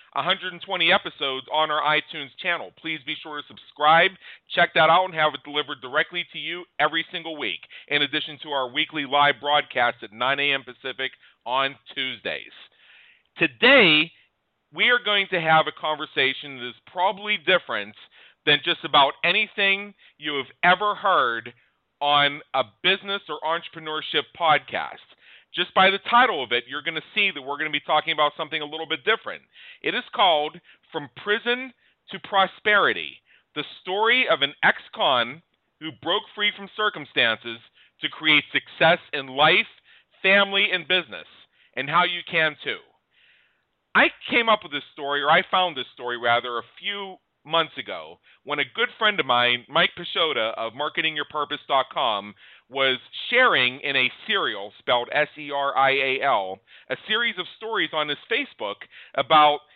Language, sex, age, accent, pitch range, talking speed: English, male, 40-59, American, 140-180 Hz, 160 wpm